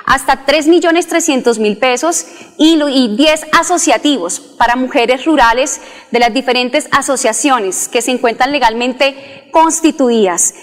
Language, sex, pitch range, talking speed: Spanish, female, 225-285 Hz, 100 wpm